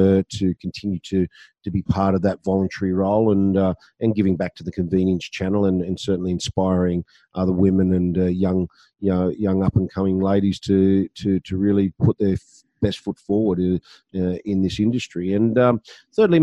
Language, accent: English, Australian